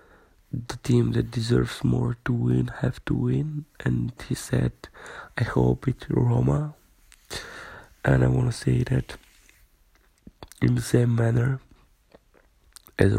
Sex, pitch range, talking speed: male, 85-125 Hz, 125 wpm